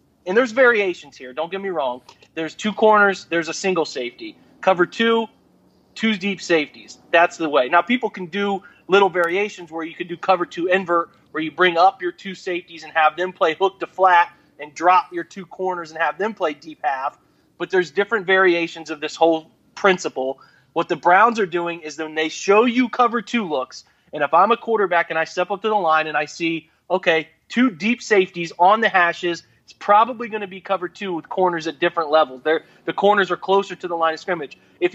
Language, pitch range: English, 165-200 Hz